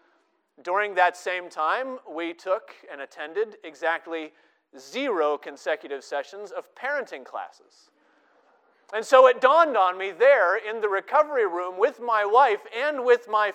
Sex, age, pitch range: male, 40-59, 190-270 Hz